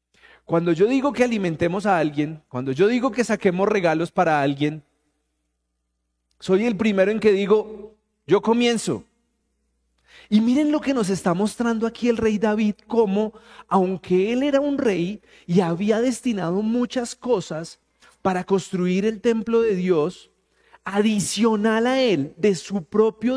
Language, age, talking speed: Spanish, 30-49, 145 wpm